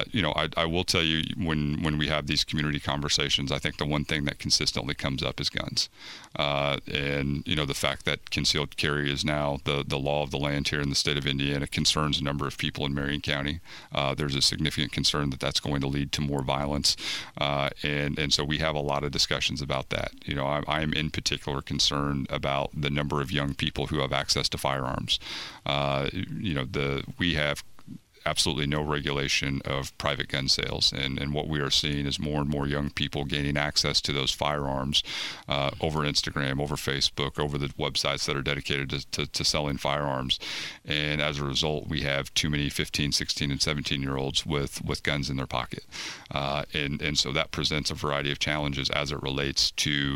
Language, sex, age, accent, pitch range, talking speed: English, male, 40-59, American, 70-75 Hz, 215 wpm